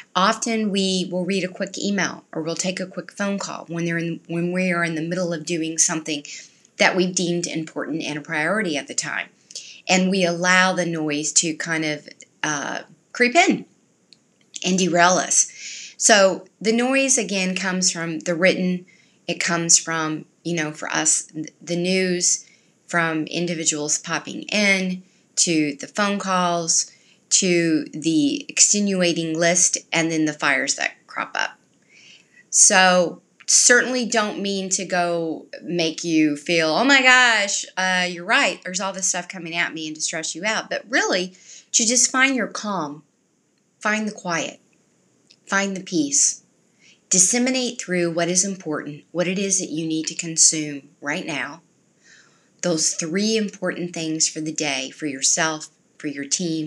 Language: English